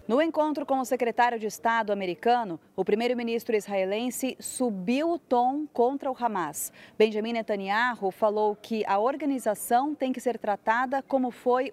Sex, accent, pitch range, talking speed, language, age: female, Brazilian, 195-255 Hz, 150 wpm, Portuguese, 30-49